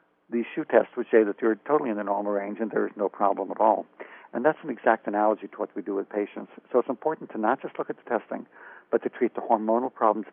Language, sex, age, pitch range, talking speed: English, male, 60-79, 105-120 Hz, 260 wpm